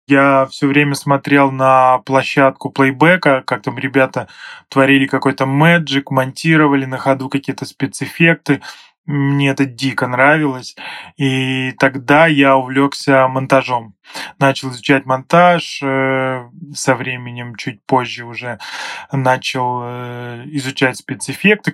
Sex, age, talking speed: male, 20-39, 105 wpm